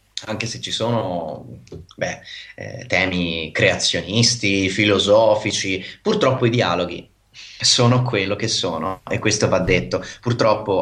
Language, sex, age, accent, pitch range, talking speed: Italian, male, 30-49, native, 95-120 Hz, 115 wpm